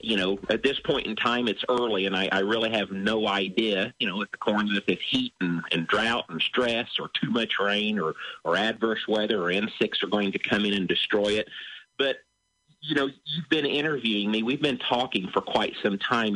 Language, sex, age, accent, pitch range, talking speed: English, male, 50-69, American, 100-120 Hz, 225 wpm